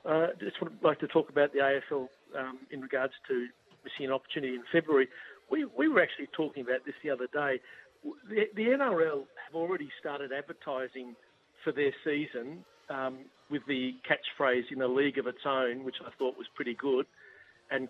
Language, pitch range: English, 130-170 Hz